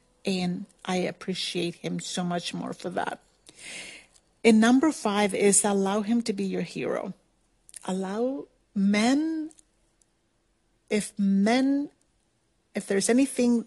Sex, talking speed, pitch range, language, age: female, 115 wpm, 180-220 Hz, English, 40-59